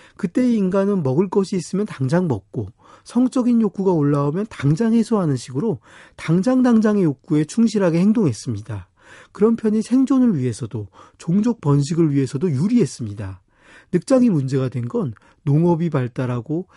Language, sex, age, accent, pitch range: Korean, male, 40-59, native, 125-195 Hz